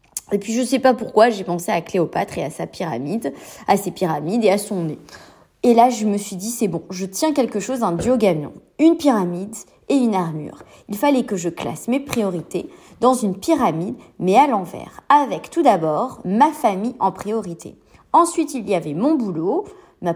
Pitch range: 195-265 Hz